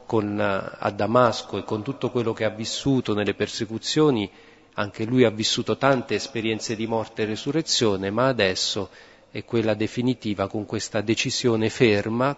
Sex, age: male, 40-59